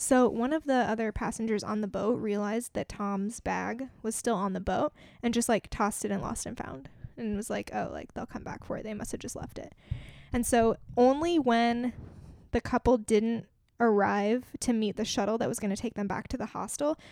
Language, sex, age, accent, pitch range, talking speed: English, female, 10-29, American, 215-250 Hz, 230 wpm